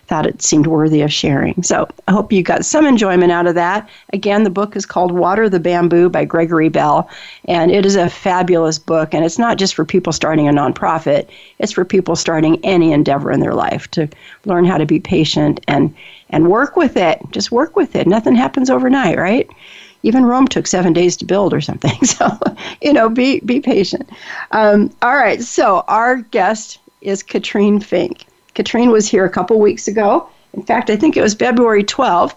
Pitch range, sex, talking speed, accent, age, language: 170-215 Hz, female, 200 wpm, American, 50-69, English